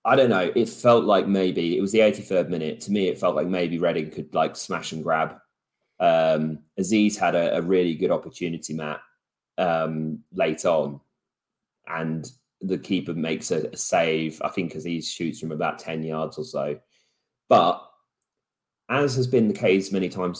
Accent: British